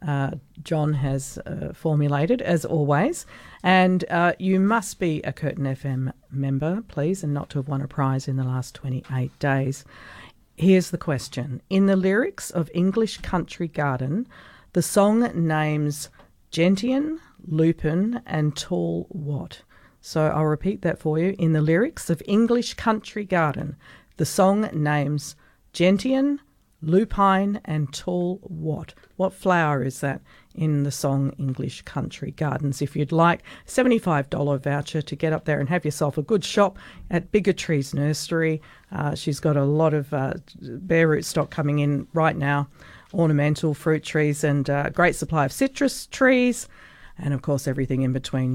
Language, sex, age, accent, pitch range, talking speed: English, female, 40-59, Australian, 140-180 Hz, 160 wpm